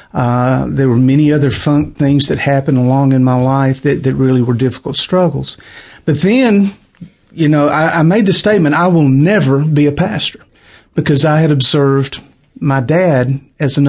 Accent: American